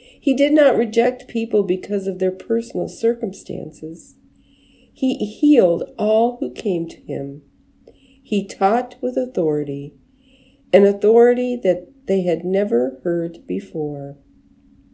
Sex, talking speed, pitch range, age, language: female, 115 wpm, 170-235 Hz, 50-69, English